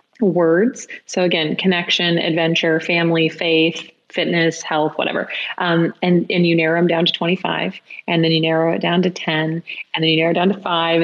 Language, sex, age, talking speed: English, female, 30-49, 190 wpm